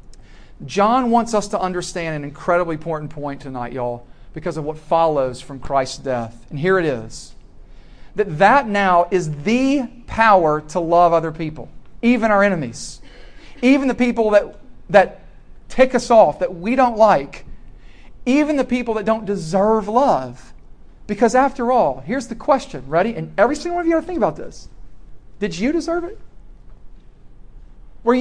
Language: English